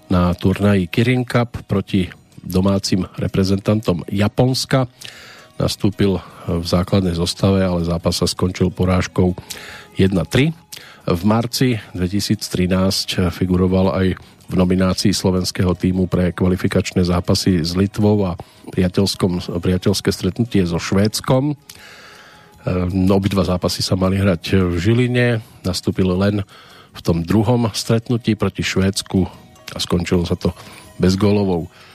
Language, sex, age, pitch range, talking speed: Slovak, male, 50-69, 90-110 Hz, 110 wpm